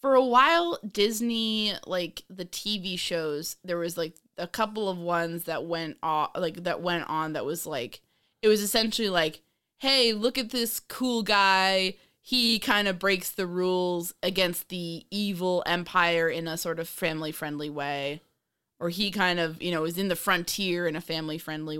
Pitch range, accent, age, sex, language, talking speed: 165-205 Hz, American, 20-39, female, English, 180 wpm